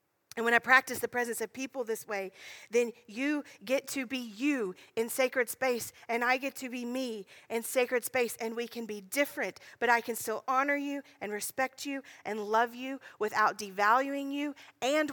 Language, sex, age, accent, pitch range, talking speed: English, female, 40-59, American, 210-260 Hz, 195 wpm